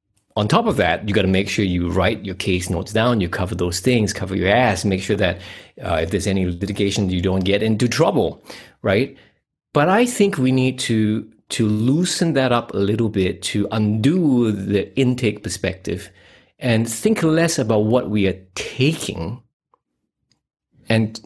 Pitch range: 95-140 Hz